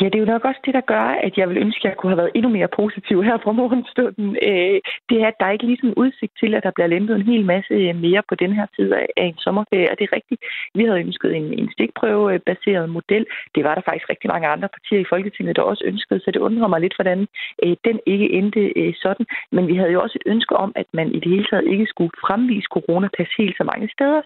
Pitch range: 180-220 Hz